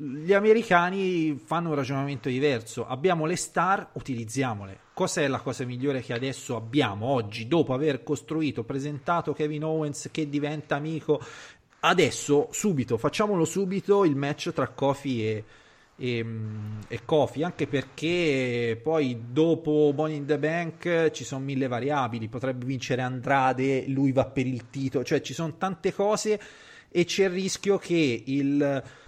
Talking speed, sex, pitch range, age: 140 wpm, male, 125-160 Hz, 30-49